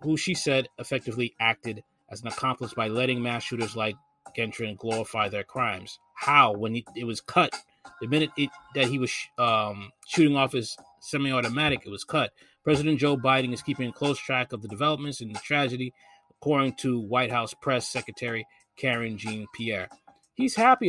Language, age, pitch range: English, 30-49, 120-155 Hz